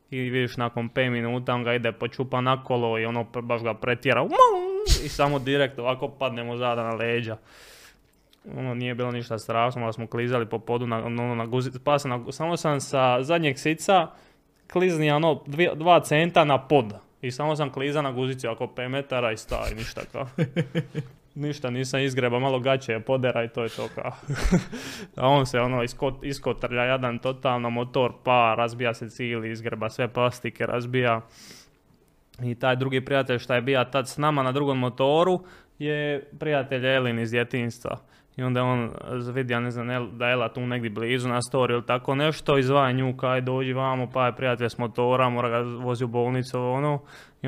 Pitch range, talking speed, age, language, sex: 120-140 Hz, 185 wpm, 20-39, Croatian, male